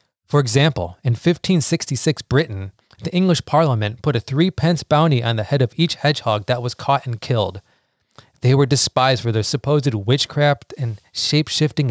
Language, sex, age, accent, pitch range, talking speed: English, male, 30-49, American, 120-145 Hz, 160 wpm